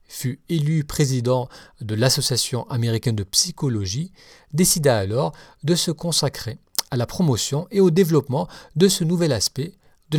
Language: French